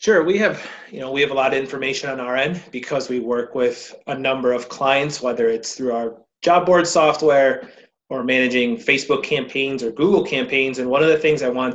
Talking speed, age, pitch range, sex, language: 220 wpm, 30-49, 130-160 Hz, male, English